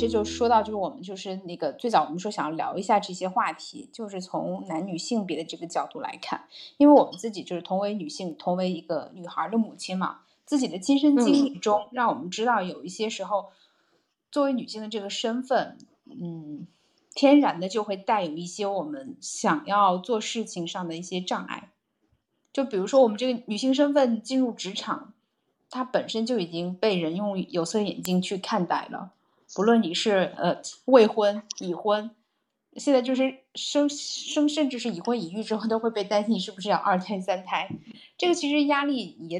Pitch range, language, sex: 190-265 Hz, Chinese, female